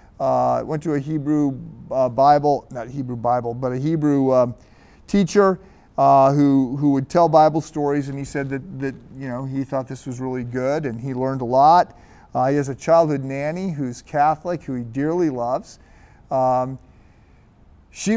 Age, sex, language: 40-59, male, English